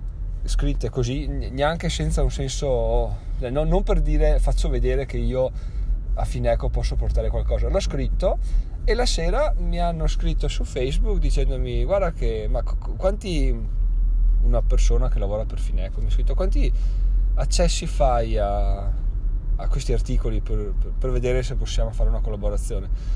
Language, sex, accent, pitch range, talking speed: Italian, male, native, 95-125 Hz, 150 wpm